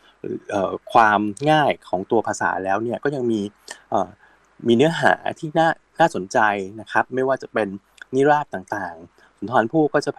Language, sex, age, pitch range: Thai, male, 20-39, 110-145 Hz